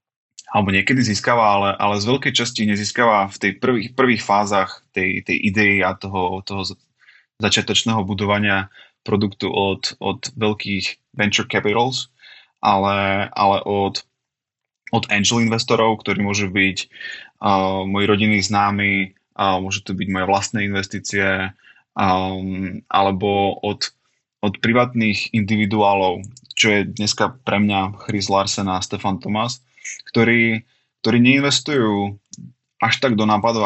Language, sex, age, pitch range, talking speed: Slovak, male, 20-39, 100-120 Hz, 125 wpm